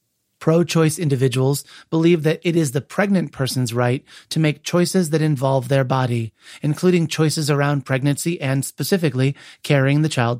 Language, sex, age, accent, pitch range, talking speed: English, male, 30-49, American, 130-155 Hz, 150 wpm